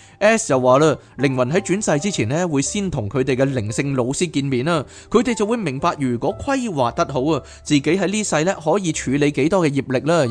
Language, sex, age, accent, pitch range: Chinese, male, 20-39, native, 135-190 Hz